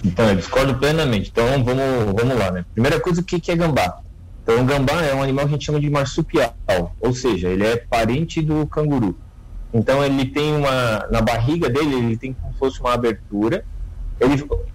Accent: Brazilian